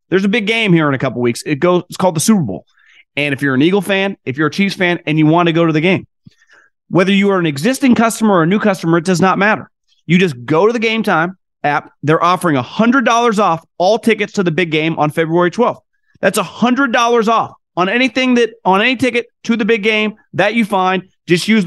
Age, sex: 30-49, male